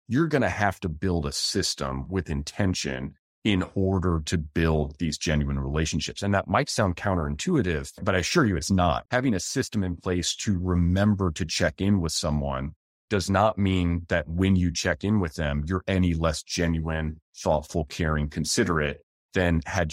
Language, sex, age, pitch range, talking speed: English, male, 30-49, 80-100 Hz, 180 wpm